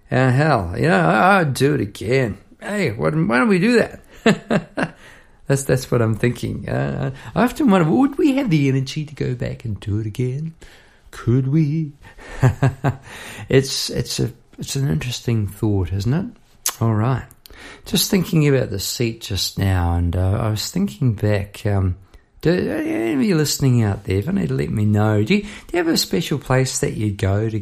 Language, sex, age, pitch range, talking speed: English, male, 50-69, 105-135 Hz, 195 wpm